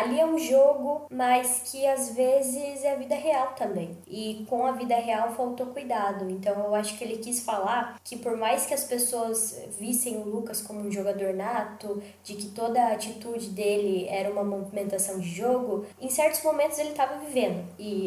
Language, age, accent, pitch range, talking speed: Portuguese, 10-29, Brazilian, 190-235 Hz, 195 wpm